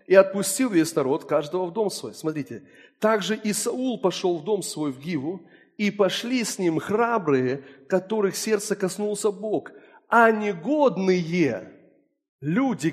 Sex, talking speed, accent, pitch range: male, 135 wpm, native, 190-295 Hz